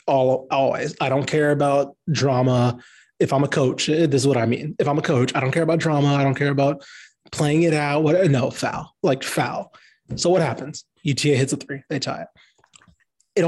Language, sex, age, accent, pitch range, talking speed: English, male, 30-49, American, 135-175 Hz, 215 wpm